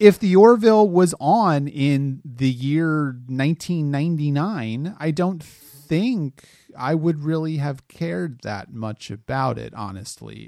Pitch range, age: 125-165 Hz, 30-49